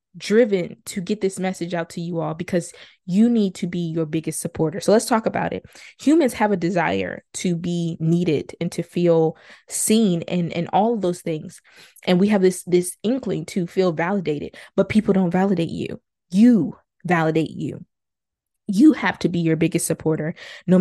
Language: English